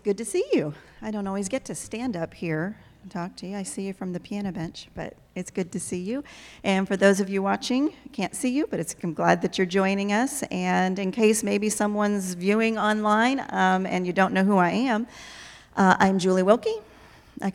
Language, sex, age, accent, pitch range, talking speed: English, female, 40-59, American, 185-215 Hz, 225 wpm